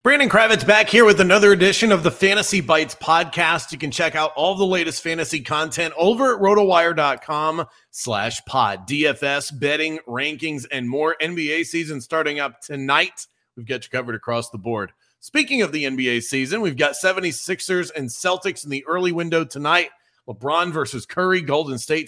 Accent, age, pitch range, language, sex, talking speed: American, 40-59, 130-170 Hz, English, male, 170 wpm